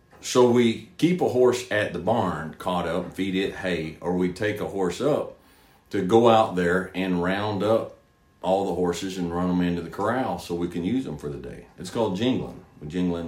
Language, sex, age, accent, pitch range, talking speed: English, male, 40-59, American, 90-110 Hz, 215 wpm